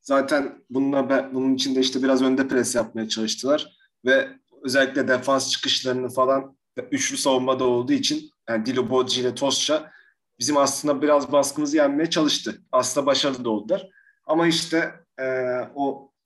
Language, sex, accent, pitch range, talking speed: Turkish, male, native, 130-175 Hz, 135 wpm